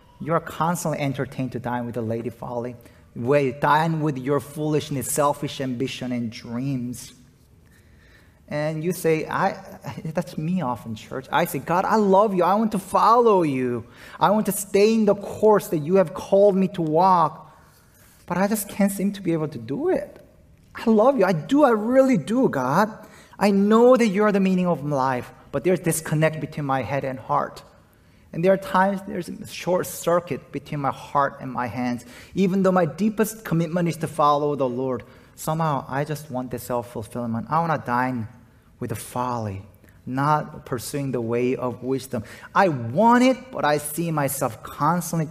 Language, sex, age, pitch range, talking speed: English, male, 30-49, 125-180 Hz, 185 wpm